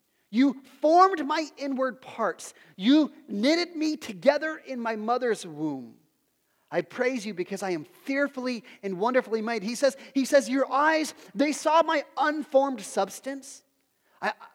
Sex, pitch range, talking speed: male, 240-335 Hz, 145 wpm